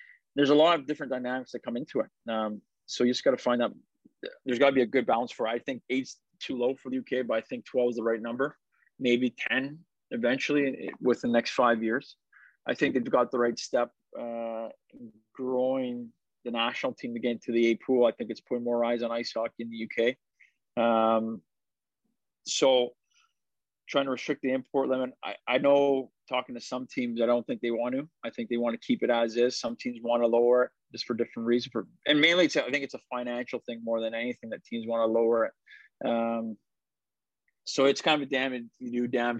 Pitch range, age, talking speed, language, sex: 115-130 Hz, 30-49, 225 wpm, English, male